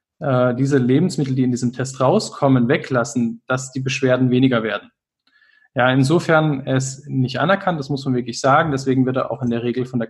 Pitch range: 125-135 Hz